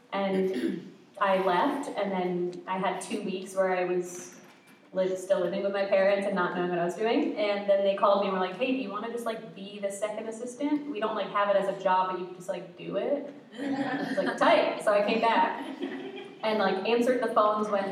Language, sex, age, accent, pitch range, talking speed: English, female, 20-39, American, 195-260 Hz, 240 wpm